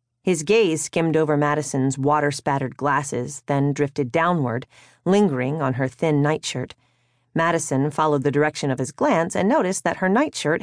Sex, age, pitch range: female, 40-59, 130-170 Hz